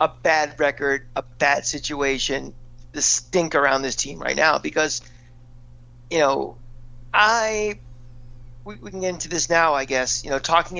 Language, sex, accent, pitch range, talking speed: English, male, American, 120-165 Hz, 155 wpm